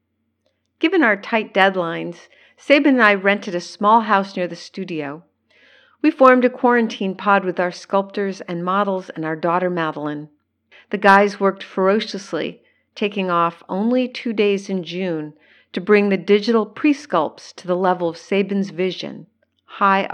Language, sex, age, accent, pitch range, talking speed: English, female, 50-69, American, 175-220 Hz, 150 wpm